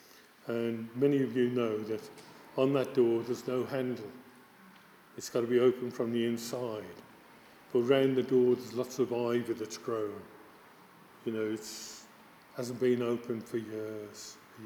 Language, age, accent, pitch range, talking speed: English, 50-69, British, 110-130 Hz, 155 wpm